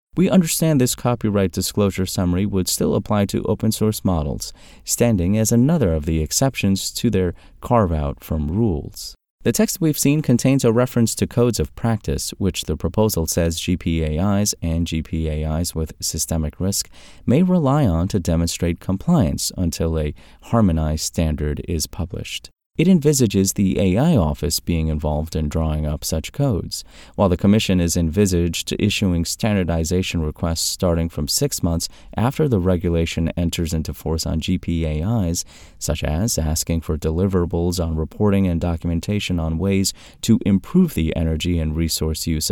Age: 30-49